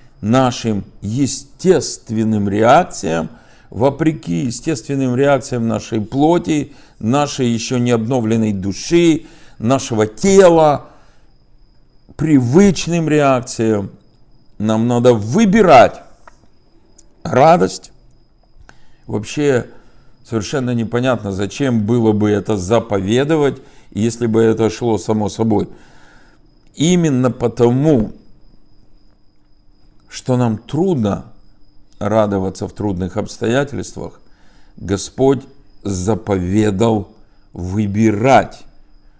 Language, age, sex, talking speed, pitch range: Russian, 50-69, male, 70 wpm, 105-135 Hz